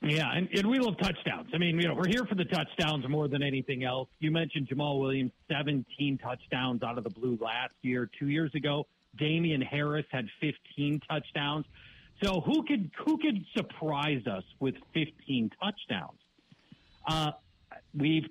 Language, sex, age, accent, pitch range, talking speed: English, male, 50-69, American, 130-170 Hz, 165 wpm